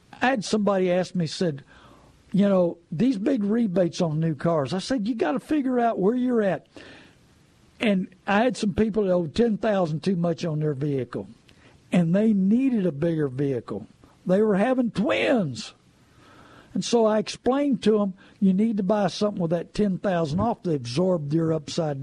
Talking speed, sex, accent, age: 185 wpm, male, American, 60-79